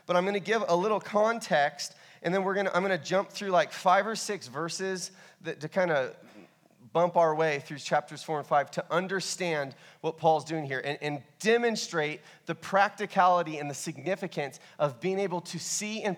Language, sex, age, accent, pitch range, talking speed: English, male, 30-49, American, 165-205 Hz, 205 wpm